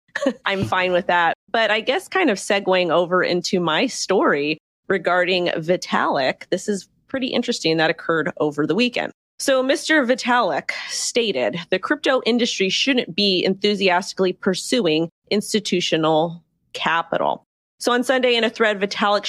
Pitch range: 170-220 Hz